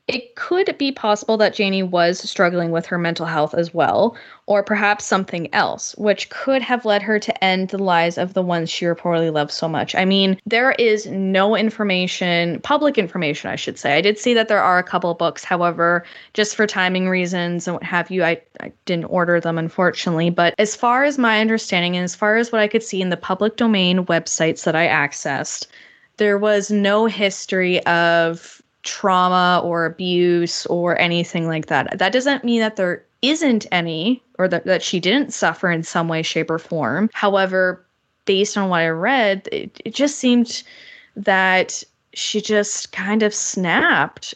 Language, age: English, 10-29